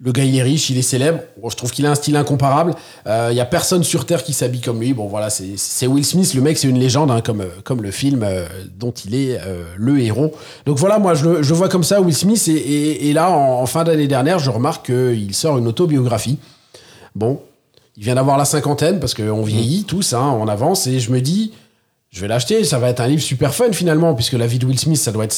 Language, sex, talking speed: French, male, 260 wpm